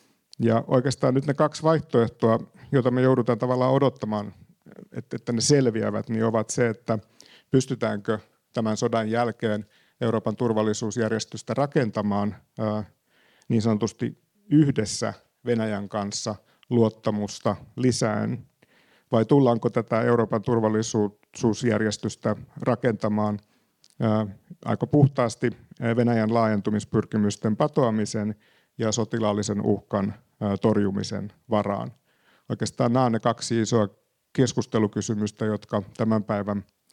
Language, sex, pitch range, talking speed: Finnish, male, 105-120 Hz, 95 wpm